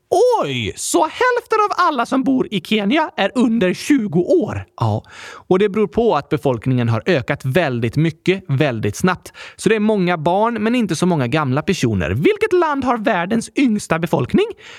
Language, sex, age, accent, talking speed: Swedish, male, 30-49, native, 175 wpm